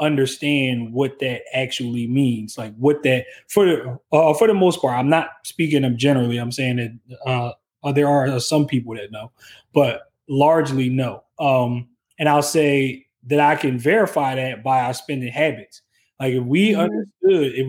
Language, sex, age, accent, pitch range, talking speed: English, male, 20-39, American, 120-140 Hz, 170 wpm